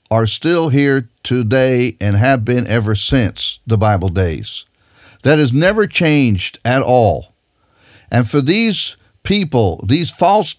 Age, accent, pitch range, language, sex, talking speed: 50-69, American, 110-160 Hz, English, male, 135 wpm